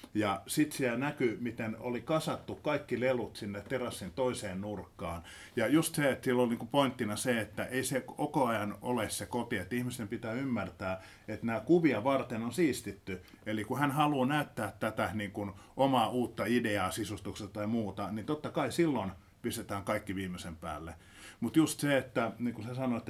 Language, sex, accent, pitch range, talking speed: Finnish, male, native, 100-130 Hz, 180 wpm